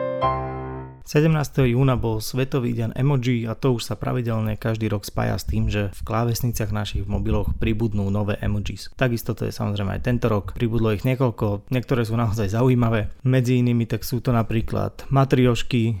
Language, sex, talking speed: Slovak, male, 175 wpm